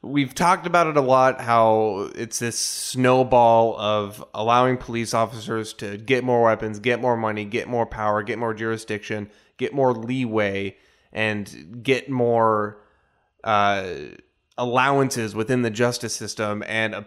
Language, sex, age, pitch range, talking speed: English, male, 20-39, 110-130 Hz, 145 wpm